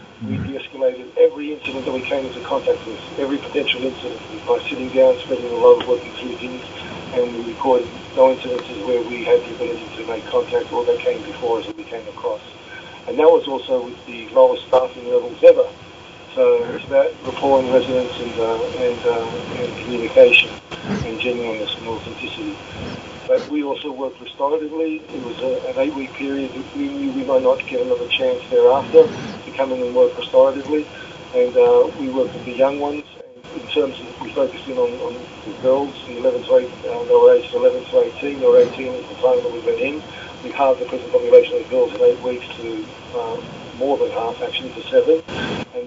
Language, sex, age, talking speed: English, male, 40-59, 200 wpm